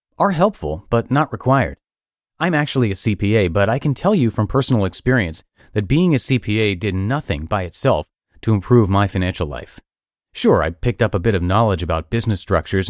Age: 30-49